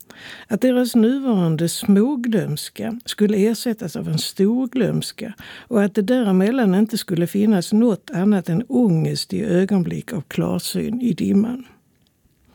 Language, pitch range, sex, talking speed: Swedish, 175-230 Hz, female, 130 wpm